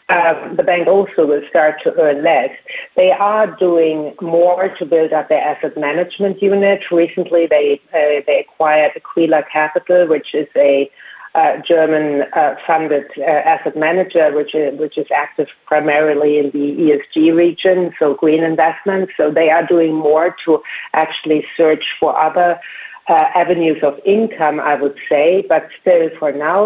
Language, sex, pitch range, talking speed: English, female, 145-180 Hz, 160 wpm